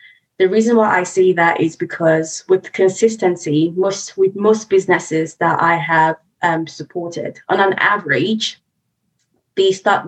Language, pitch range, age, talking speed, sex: English, 165-195 Hz, 20-39, 145 wpm, female